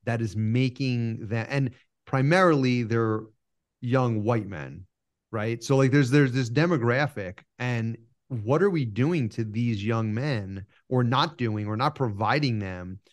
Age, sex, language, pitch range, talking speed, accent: 30-49, male, English, 110-135 Hz, 150 wpm, American